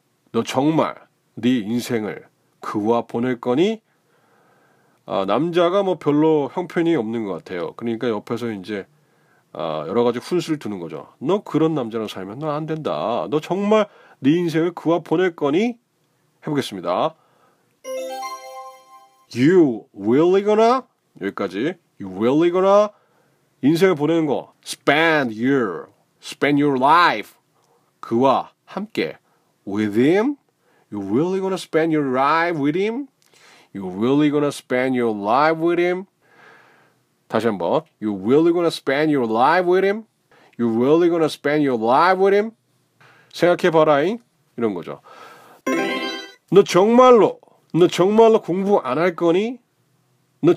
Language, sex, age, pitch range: Korean, male, 30-49, 125-195 Hz